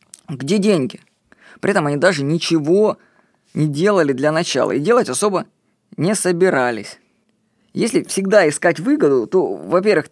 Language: Russian